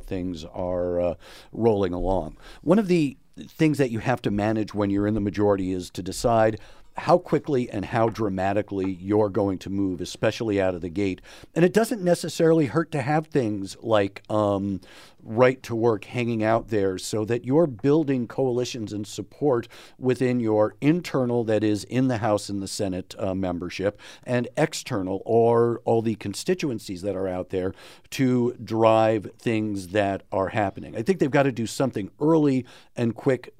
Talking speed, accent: 175 wpm, American